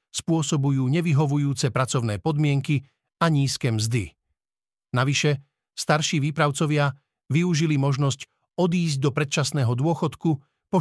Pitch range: 125-165 Hz